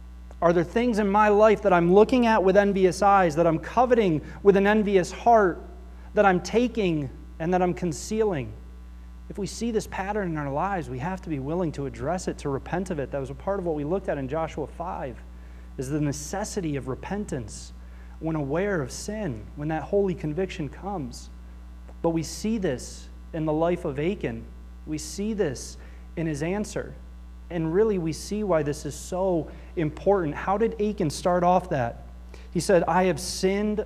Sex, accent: male, American